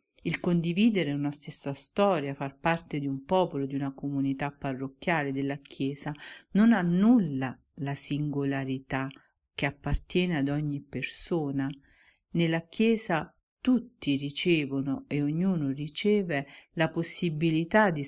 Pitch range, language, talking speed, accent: 140-170 Hz, Italian, 120 wpm, native